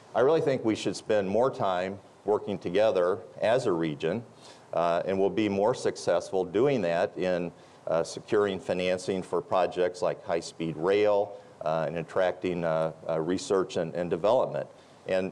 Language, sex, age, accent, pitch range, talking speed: English, male, 50-69, American, 90-130 Hz, 155 wpm